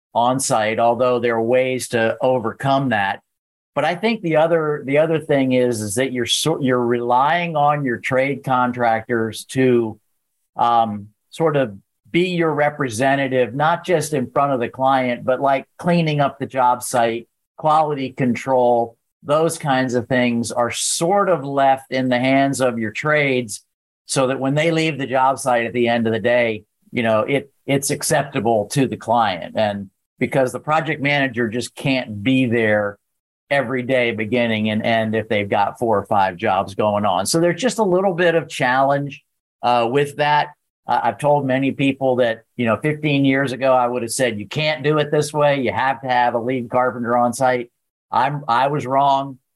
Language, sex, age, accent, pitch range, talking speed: English, male, 50-69, American, 115-140 Hz, 190 wpm